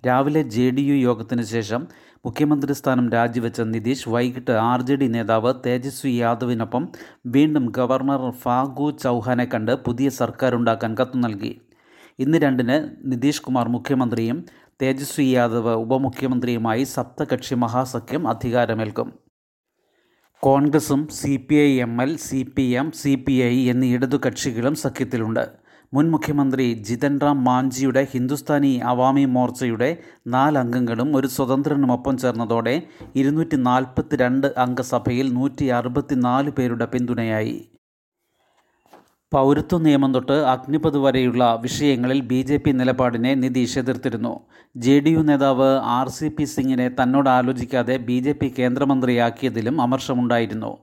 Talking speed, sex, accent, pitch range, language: 95 wpm, male, native, 125-140 Hz, Malayalam